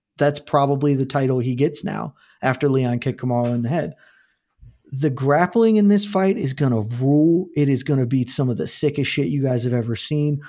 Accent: American